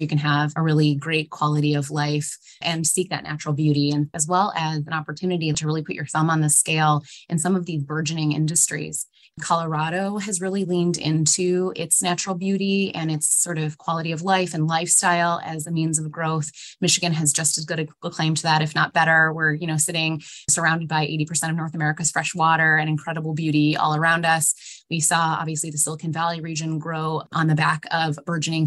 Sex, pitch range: female, 155-170 Hz